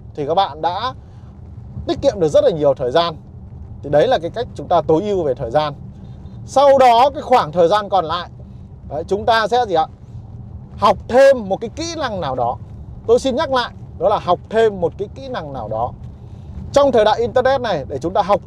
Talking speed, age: 225 wpm, 30-49